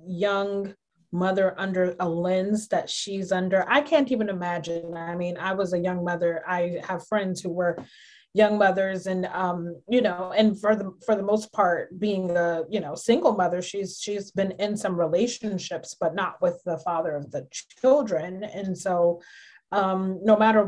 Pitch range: 180-215 Hz